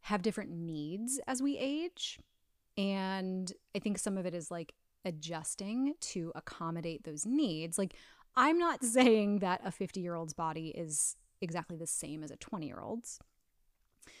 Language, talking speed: English, 145 wpm